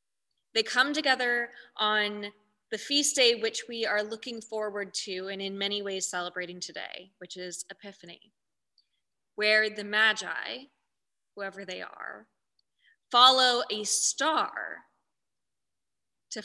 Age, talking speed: 20-39, 115 wpm